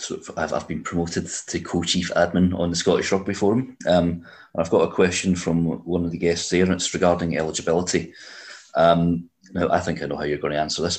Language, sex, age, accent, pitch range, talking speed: English, male, 30-49, British, 80-95 Hz, 220 wpm